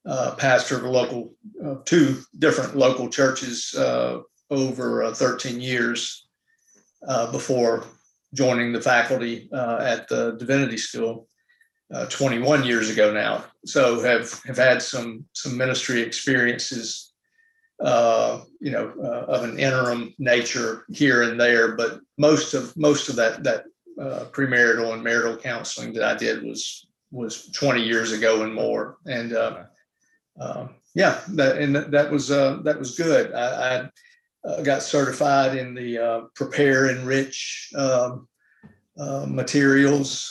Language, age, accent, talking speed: English, 50-69, American, 145 wpm